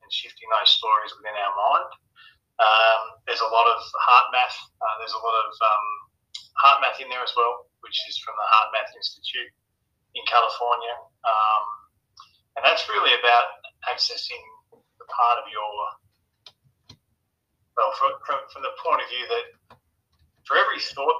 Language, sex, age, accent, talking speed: English, male, 30-49, Australian, 155 wpm